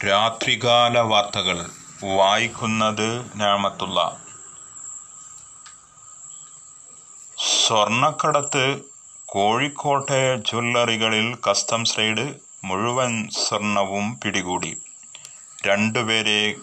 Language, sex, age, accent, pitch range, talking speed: Malayalam, male, 30-49, native, 105-130 Hz, 45 wpm